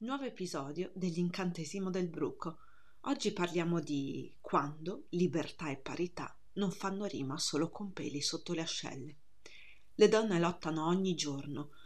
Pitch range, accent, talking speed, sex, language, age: 150-185 Hz, native, 130 wpm, female, Italian, 30-49